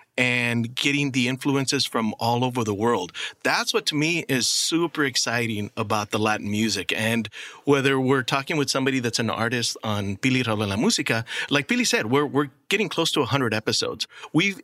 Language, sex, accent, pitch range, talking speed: English, male, American, 110-140 Hz, 185 wpm